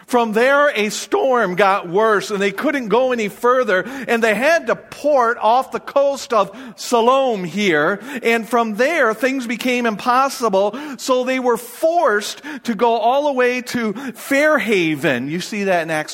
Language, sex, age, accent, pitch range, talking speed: English, male, 40-59, American, 195-255 Hz, 165 wpm